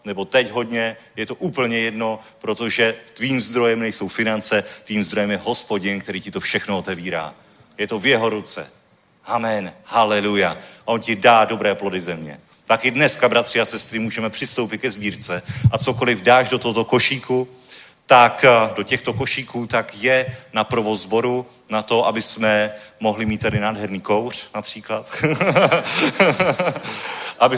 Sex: male